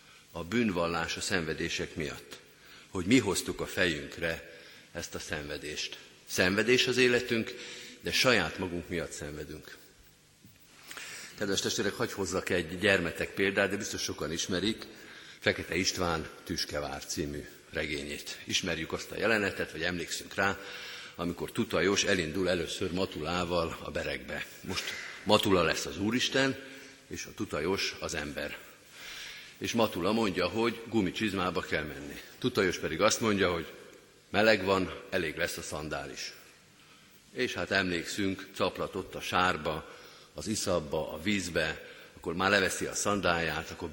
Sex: male